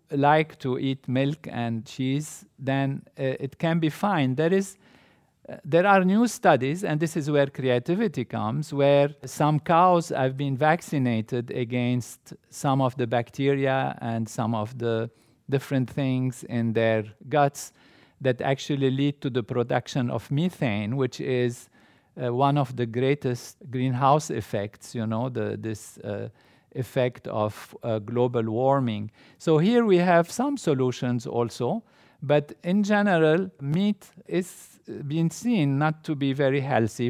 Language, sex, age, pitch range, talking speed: English, male, 50-69, 120-155 Hz, 145 wpm